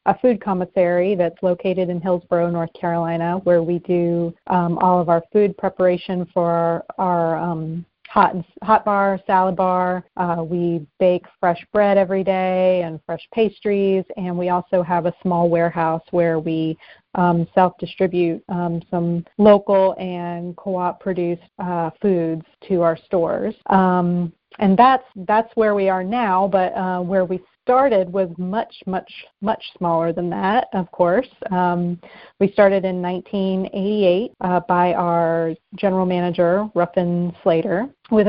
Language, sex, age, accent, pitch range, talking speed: English, female, 30-49, American, 175-195 Hz, 145 wpm